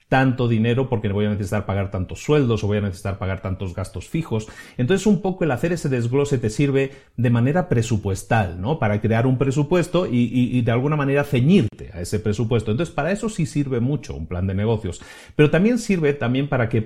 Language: Spanish